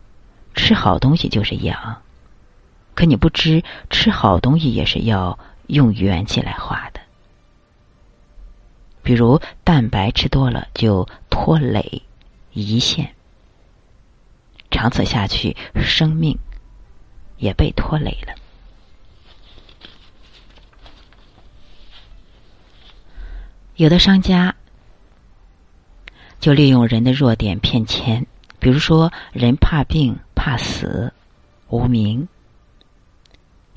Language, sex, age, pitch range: Chinese, female, 50-69, 100-145 Hz